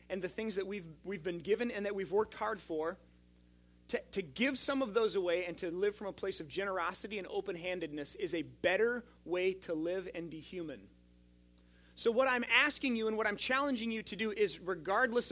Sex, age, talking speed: male, 30-49, 210 wpm